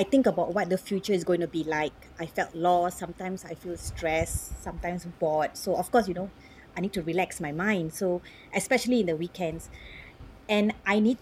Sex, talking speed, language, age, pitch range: female, 210 wpm, English, 30-49, 170-215 Hz